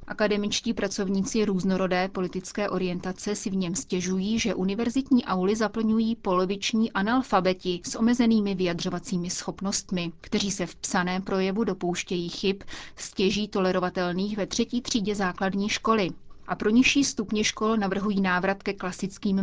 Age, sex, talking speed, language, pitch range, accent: 30-49, female, 130 wpm, Czech, 185-215 Hz, native